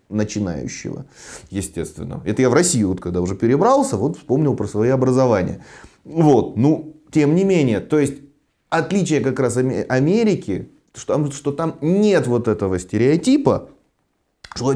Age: 30-49